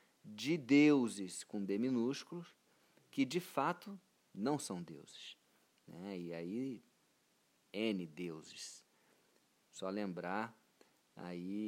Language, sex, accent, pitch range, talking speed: Portuguese, male, Brazilian, 90-105 Hz, 100 wpm